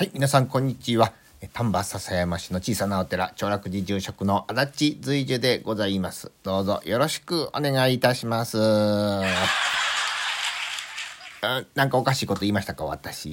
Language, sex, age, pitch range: Japanese, male, 40-59, 100-135 Hz